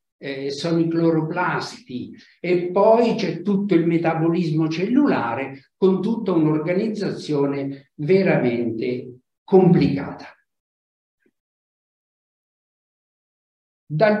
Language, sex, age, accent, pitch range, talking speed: Italian, male, 60-79, native, 130-190 Hz, 70 wpm